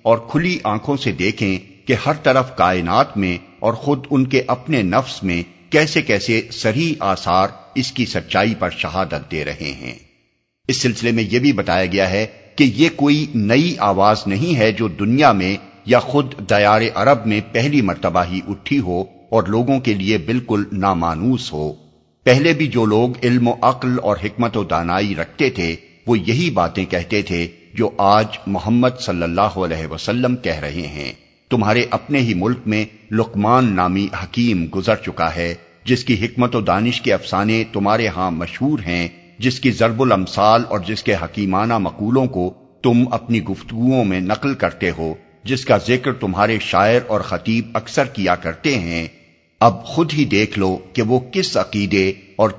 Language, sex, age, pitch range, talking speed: Urdu, male, 50-69, 95-125 Hz, 175 wpm